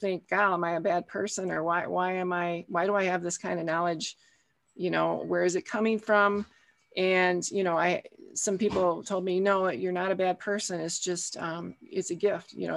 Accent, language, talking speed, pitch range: American, English, 230 wpm, 175-210 Hz